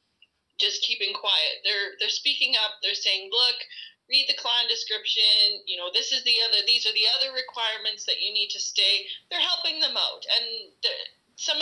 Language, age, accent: English, 30-49, American